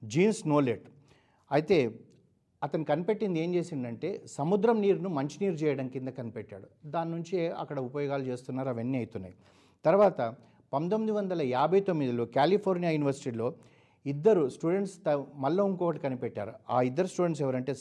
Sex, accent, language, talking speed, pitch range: male, native, Telugu, 130 wpm, 125-165 Hz